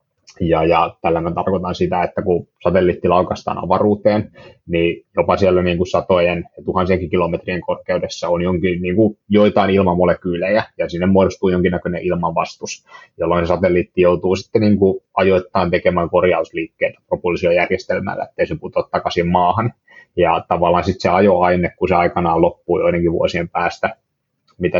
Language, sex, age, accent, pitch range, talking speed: Finnish, male, 20-39, native, 90-100 Hz, 140 wpm